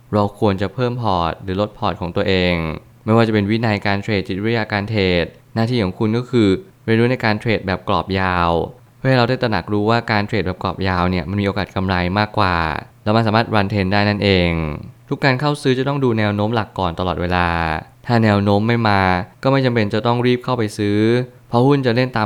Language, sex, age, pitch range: Thai, male, 20-39, 95-120 Hz